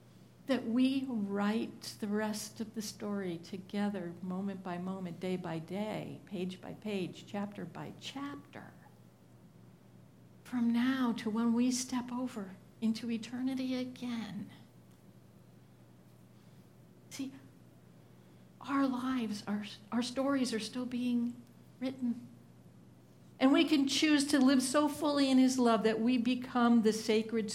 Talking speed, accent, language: 125 wpm, American, English